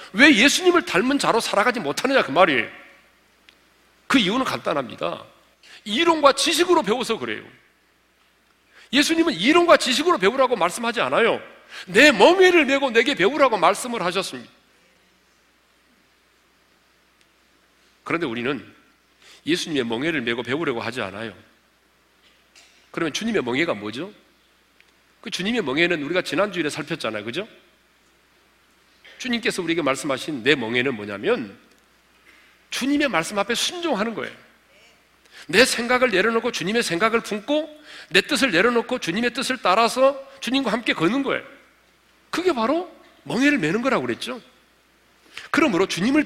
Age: 40-59